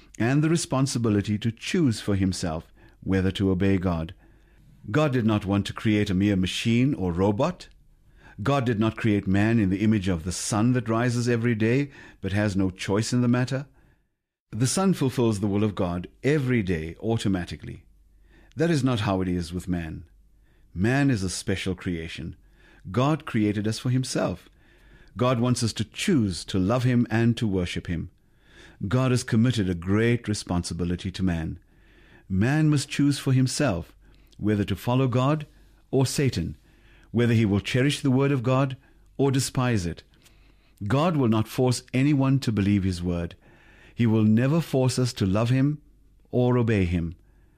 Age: 50-69